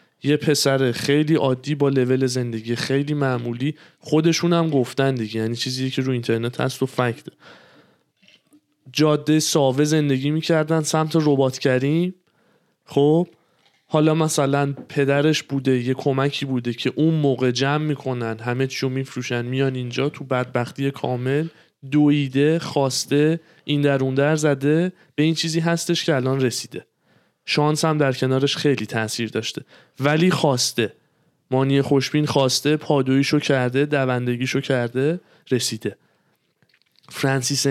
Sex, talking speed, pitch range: male, 125 wpm, 130-150 Hz